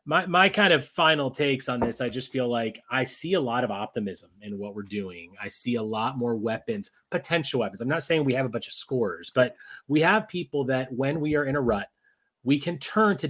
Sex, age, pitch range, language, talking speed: male, 30-49, 120-165 Hz, English, 245 wpm